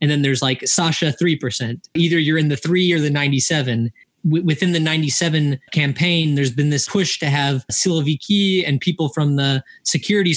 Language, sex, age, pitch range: English, male, 20-39, 140-165 Hz